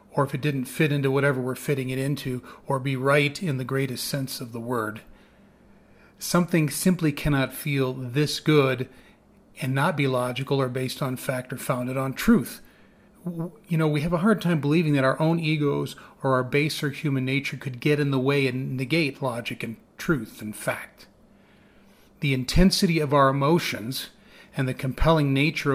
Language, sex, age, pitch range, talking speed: English, male, 40-59, 130-160 Hz, 180 wpm